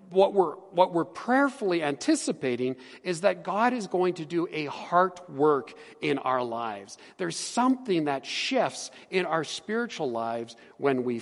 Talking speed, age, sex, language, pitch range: 155 wpm, 50-69, male, English, 155-230 Hz